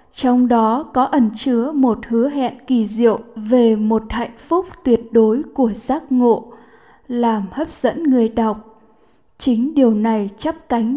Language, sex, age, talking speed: Vietnamese, female, 10-29, 160 wpm